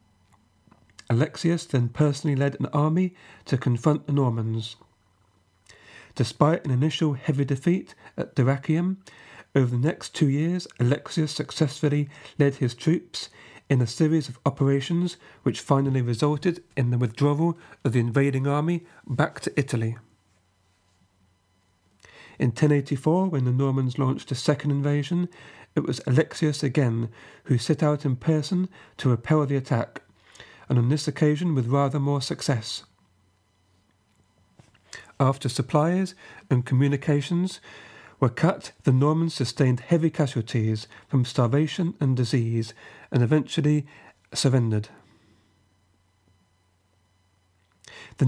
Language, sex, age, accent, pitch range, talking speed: English, male, 50-69, British, 115-150 Hz, 115 wpm